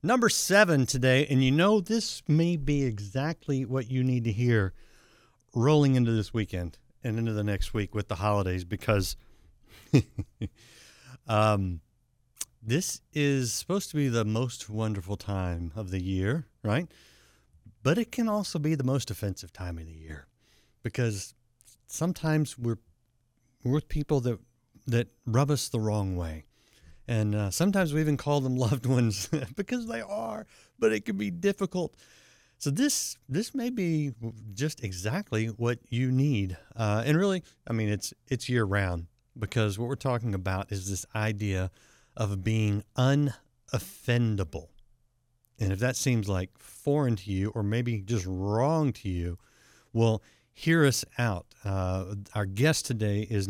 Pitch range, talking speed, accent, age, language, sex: 105-140 Hz, 155 wpm, American, 60-79, English, male